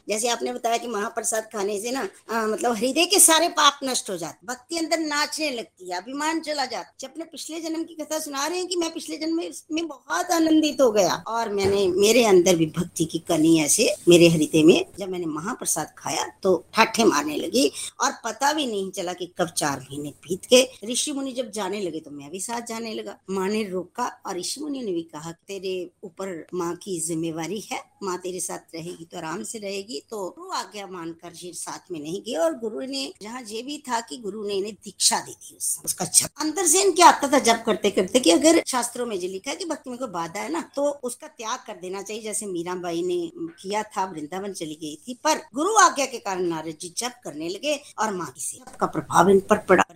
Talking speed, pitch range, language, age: 215 wpm, 185-275 Hz, Hindi, 60-79